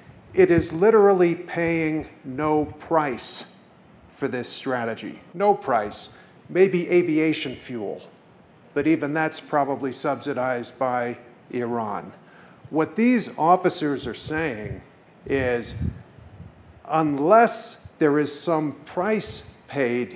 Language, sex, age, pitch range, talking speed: English, male, 50-69, 135-170 Hz, 100 wpm